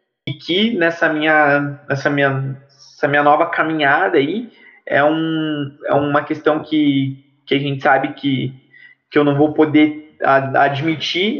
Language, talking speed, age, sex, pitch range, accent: Portuguese, 145 wpm, 20-39, male, 135-160 Hz, Brazilian